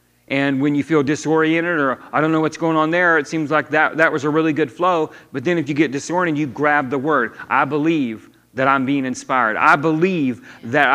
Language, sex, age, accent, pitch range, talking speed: English, male, 40-59, American, 130-160 Hz, 230 wpm